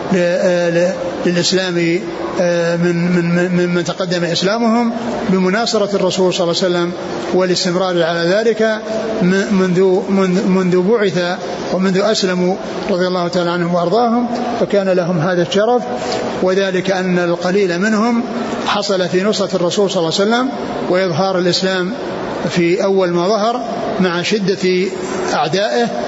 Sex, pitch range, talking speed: male, 175-195 Hz, 115 wpm